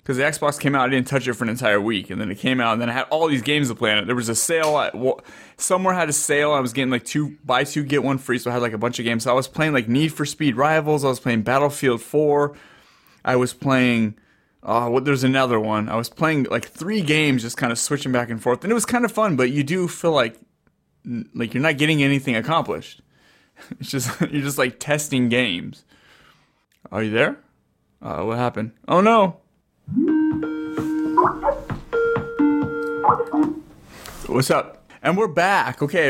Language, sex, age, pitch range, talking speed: English, male, 20-39, 120-155 Hz, 215 wpm